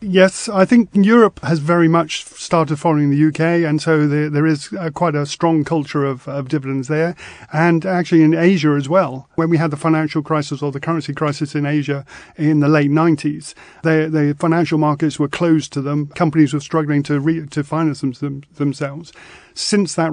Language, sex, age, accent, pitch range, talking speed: English, male, 40-59, British, 145-160 Hz, 200 wpm